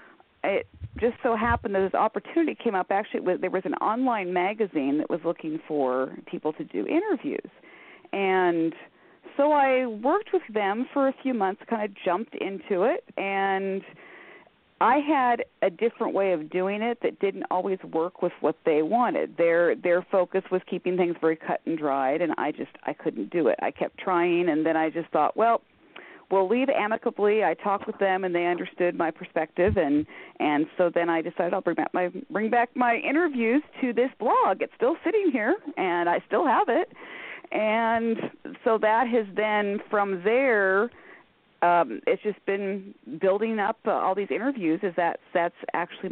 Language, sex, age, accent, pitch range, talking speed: English, female, 40-59, American, 175-240 Hz, 185 wpm